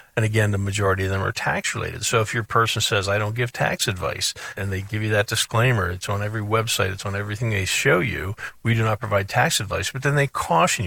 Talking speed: 245 wpm